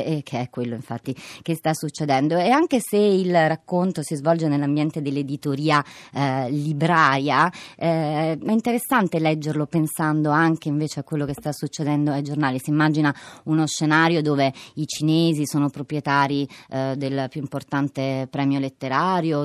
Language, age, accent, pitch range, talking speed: Italian, 30-49, native, 150-195 Hz, 145 wpm